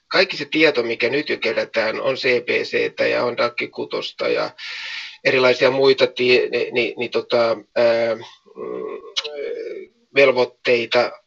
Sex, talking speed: male, 115 wpm